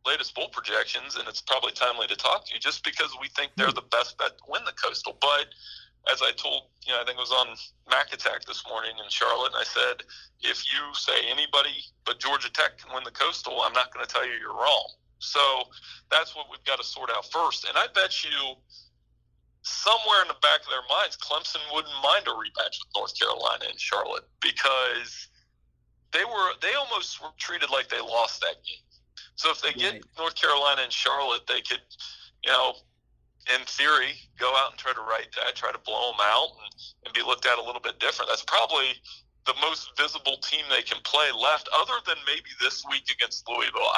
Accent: American